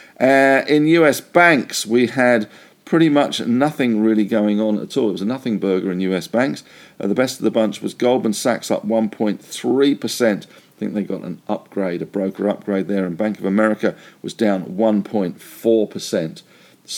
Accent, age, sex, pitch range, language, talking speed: British, 50-69, male, 95-130 Hz, English, 175 wpm